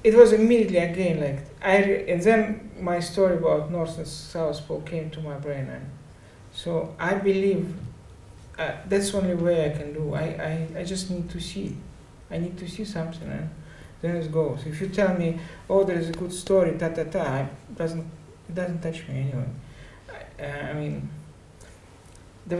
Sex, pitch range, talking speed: male, 135-180 Hz, 185 wpm